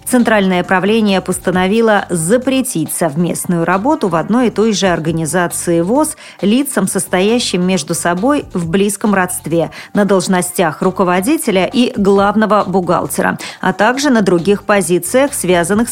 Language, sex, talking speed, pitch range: Russian, female, 120 wpm, 180-235 Hz